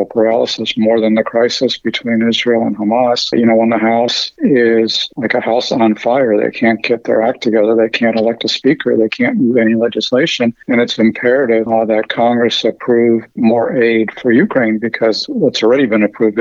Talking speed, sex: 190 wpm, male